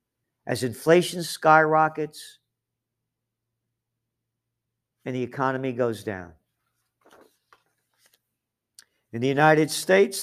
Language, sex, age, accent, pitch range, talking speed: English, male, 50-69, American, 115-140 Hz, 70 wpm